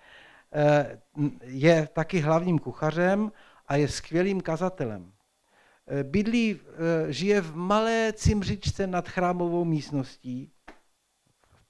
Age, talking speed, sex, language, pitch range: 60-79, 85 wpm, male, Czech, 140-175 Hz